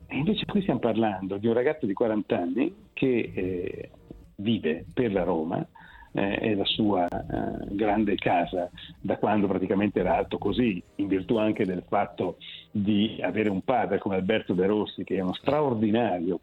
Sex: male